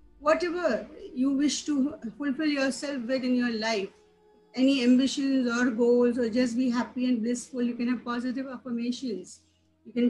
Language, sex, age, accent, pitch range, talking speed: English, female, 50-69, Indian, 220-255 Hz, 160 wpm